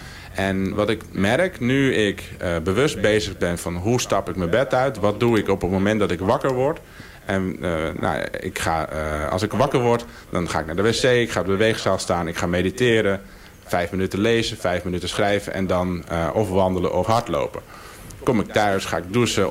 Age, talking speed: 50-69, 215 wpm